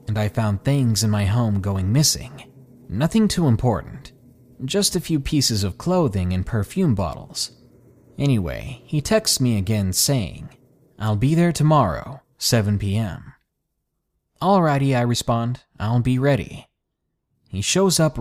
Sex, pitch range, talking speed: male, 100-140 Hz, 140 wpm